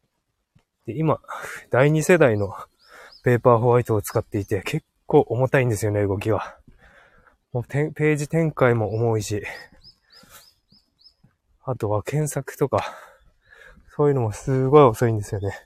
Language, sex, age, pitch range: Japanese, male, 20-39, 105-130 Hz